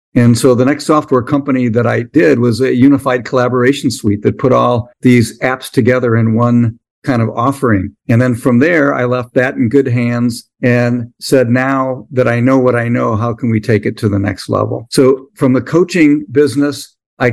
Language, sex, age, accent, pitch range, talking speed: English, male, 50-69, American, 115-135 Hz, 205 wpm